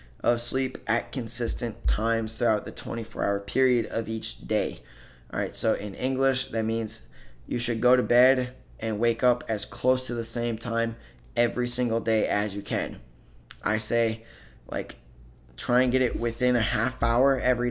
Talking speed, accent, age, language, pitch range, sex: 175 wpm, American, 20-39, English, 105-125 Hz, male